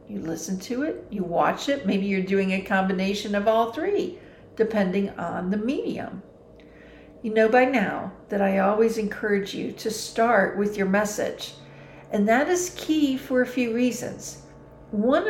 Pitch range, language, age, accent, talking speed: 195-250 Hz, English, 50-69, American, 165 wpm